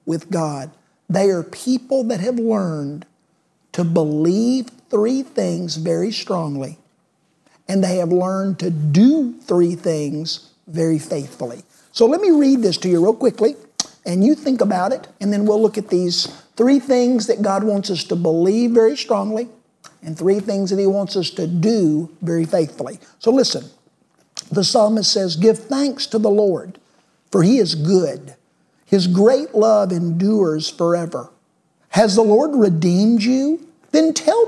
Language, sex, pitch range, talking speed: English, male, 170-225 Hz, 160 wpm